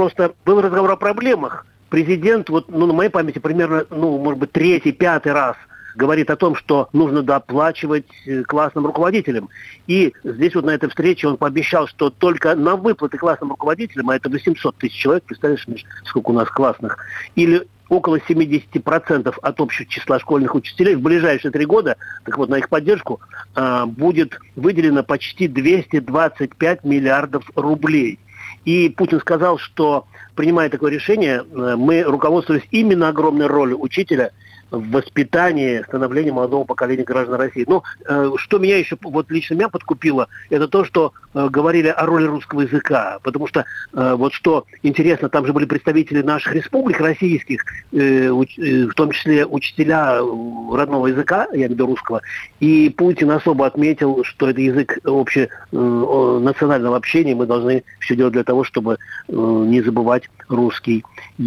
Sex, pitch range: male, 130-170 Hz